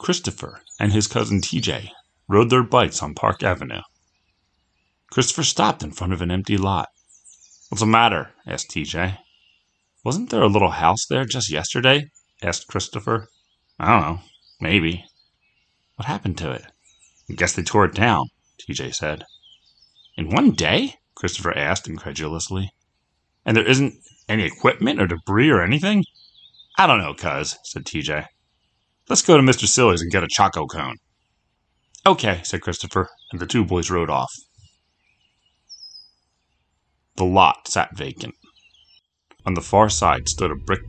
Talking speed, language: 145 wpm, English